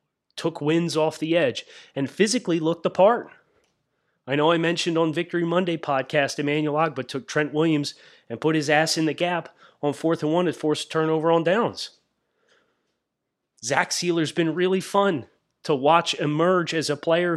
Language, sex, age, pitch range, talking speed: English, male, 30-49, 150-195 Hz, 175 wpm